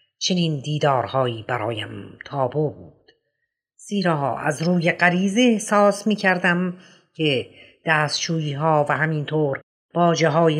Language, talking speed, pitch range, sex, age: Persian, 100 wpm, 140-185 Hz, female, 50-69